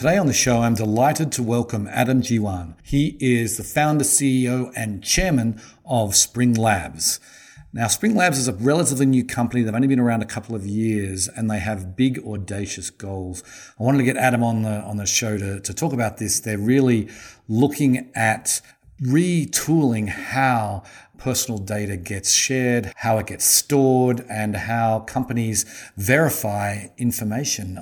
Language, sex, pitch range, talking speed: English, male, 105-130 Hz, 165 wpm